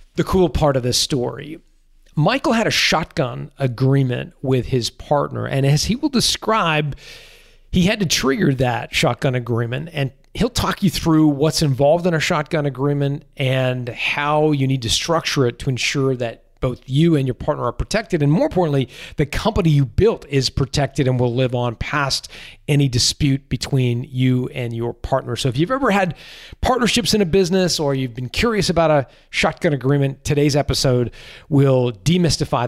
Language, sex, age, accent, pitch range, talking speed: English, male, 40-59, American, 130-170 Hz, 175 wpm